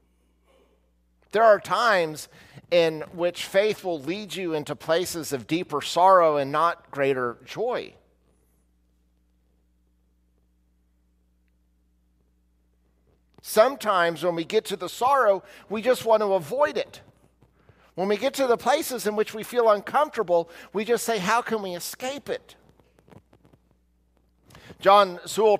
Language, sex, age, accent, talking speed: English, male, 50-69, American, 120 wpm